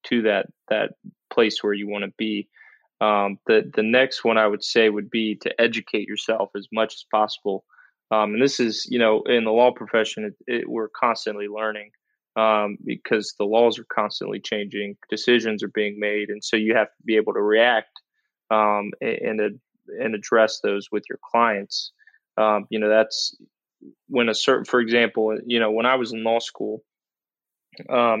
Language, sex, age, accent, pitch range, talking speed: English, male, 20-39, American, 105-115 Hz, 180 wpm